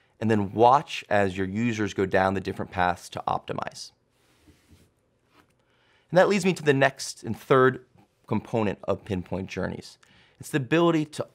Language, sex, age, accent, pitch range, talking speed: English, male, 30-49, American, 95-125 Hz, 160 wpm